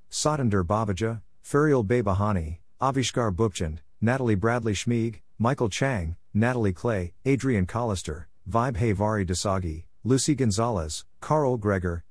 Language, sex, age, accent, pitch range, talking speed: English, male, 50-69, American, 90-120 Hz, 105 wpm